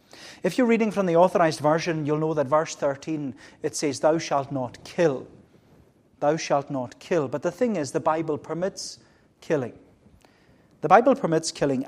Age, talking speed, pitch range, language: 30-49, 170 wpm, 135-170 Hz, English